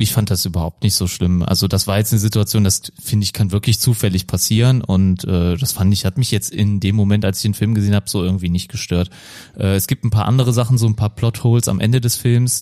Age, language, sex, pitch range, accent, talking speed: 30-49, German, male, 100-120 Hz, German, 265 wpm